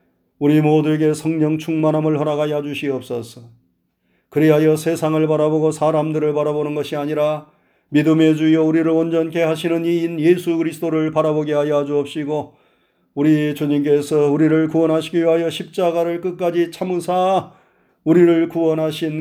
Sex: male